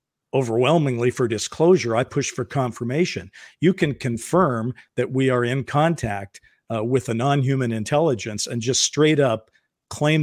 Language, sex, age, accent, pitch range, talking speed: English, male, 50-69, American, 120-150 Hz, 145 wpm